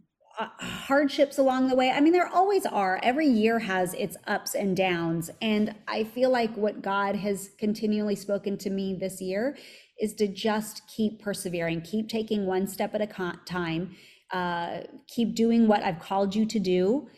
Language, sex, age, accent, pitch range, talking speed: English, female, 30-49, American, 195-250 Hz, 180 wpm